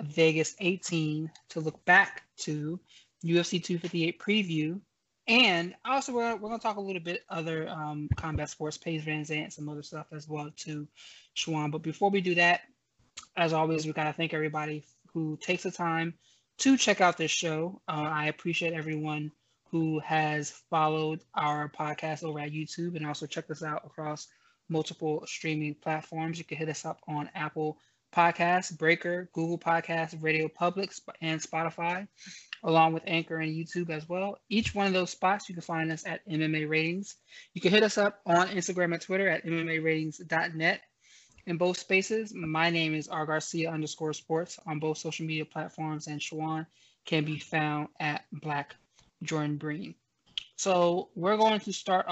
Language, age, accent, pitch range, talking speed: English, 20-39, American, 155-175 Hz, 170 wpm